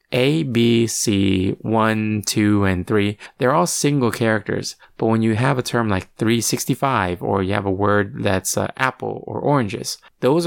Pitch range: 105-125 Hz